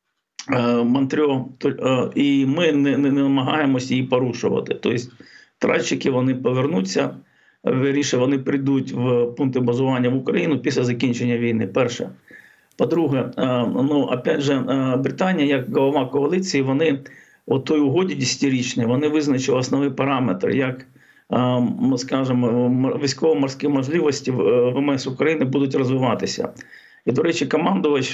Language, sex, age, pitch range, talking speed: Ukrainian, male, 50-69, 130-145 Hz, 110 wpm